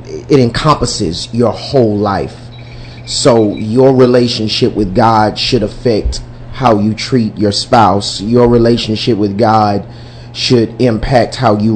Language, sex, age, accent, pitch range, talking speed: English, male, 30-49, American, 115-130 Hz, 130 wpm